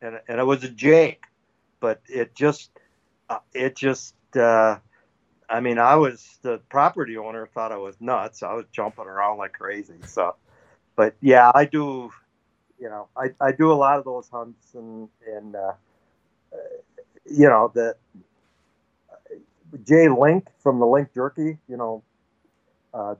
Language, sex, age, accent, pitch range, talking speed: English, male, 50-69, American, 110-140 Hz, 160 wpm